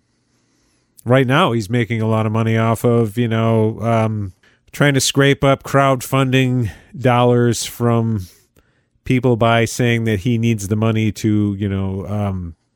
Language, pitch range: English, 95-115 Hz